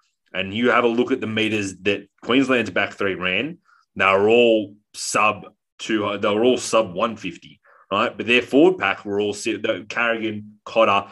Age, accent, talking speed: 20-39, Australian, 185 wpm